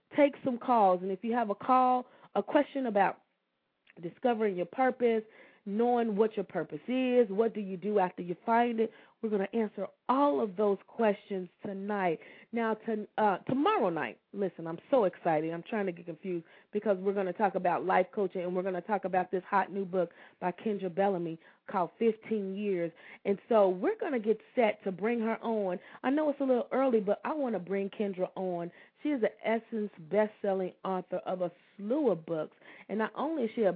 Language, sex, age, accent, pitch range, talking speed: English, female, 30-49, American, 180-230 Hz, 205 wpm